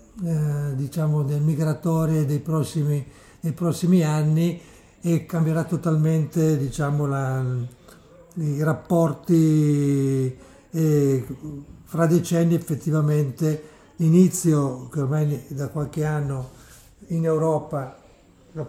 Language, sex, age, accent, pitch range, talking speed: Italian, male, 60-79, native, 145-170 Hz, 75 wpm